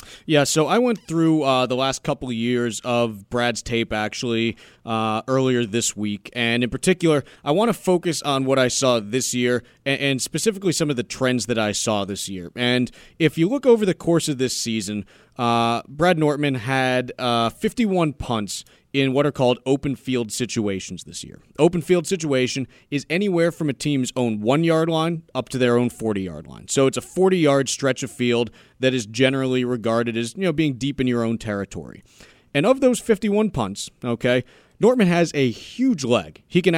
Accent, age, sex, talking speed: American, 30-49, male, 195 wpm